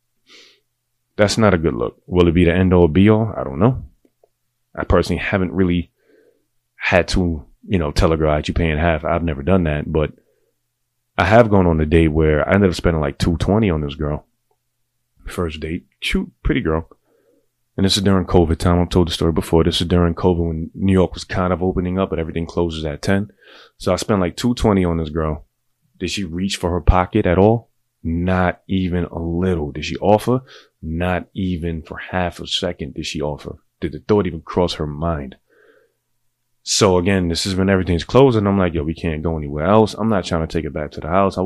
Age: 30-49